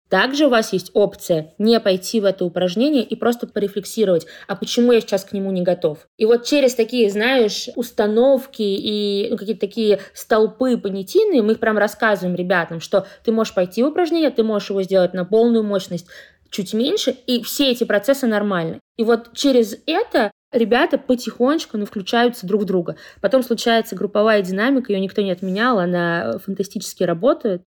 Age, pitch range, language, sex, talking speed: 20-39, 180-225 Hz, Russian, female, 170 wpm